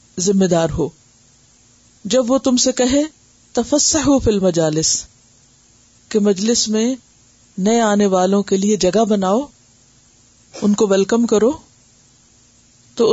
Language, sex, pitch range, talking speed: Urdu, female, 160-255 Hz, 115 wpm